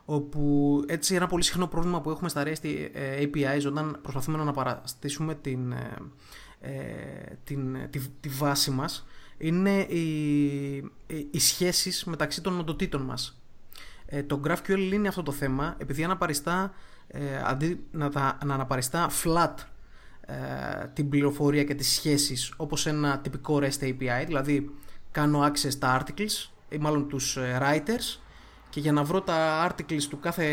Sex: male